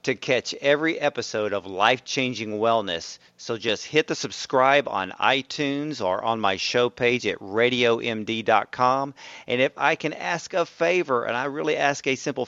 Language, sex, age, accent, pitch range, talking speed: English, male, 40-59, American, 110-135 Hz, 165 wpm